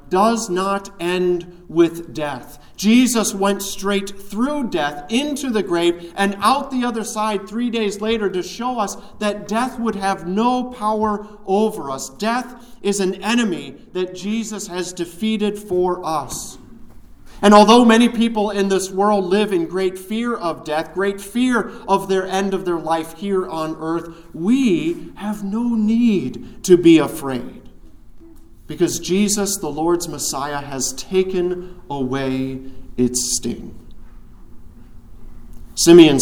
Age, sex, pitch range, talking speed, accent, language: 40-59, male, 155-205 Hz, 140 wpm, American, English